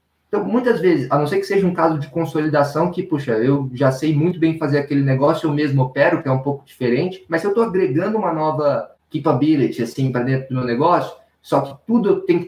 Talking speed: 235 wpm